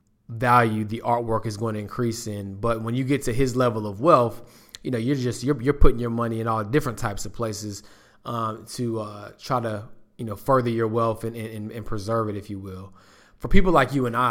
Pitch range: 110-120 Hz